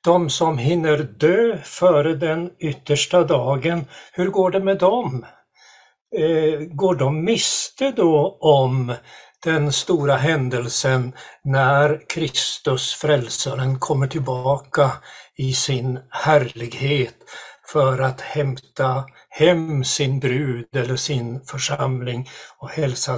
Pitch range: 130-165 Hz